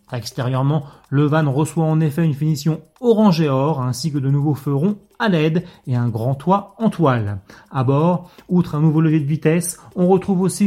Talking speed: 195 wpm